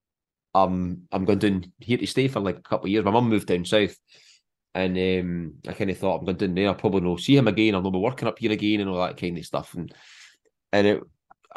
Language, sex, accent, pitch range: English, male, British, 90-110 Hz